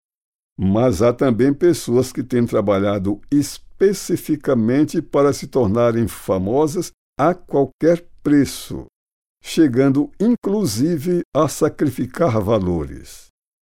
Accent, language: Brazilian, Portuguese